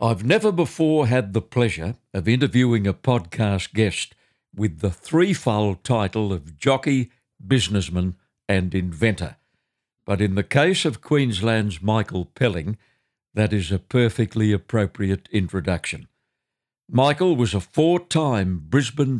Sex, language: male, English